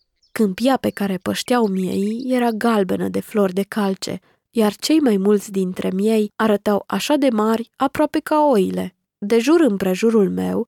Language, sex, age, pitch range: Romanian, female, 20-39, 195-240 Hz